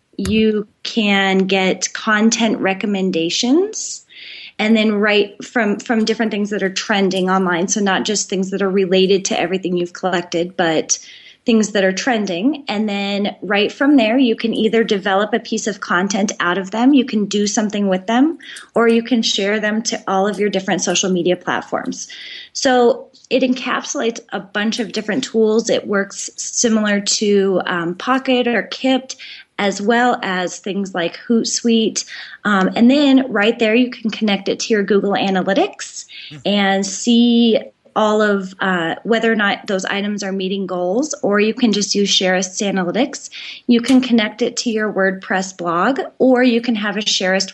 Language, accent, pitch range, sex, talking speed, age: English, American, 190-235 Hz, female, 170 wpm, 20-39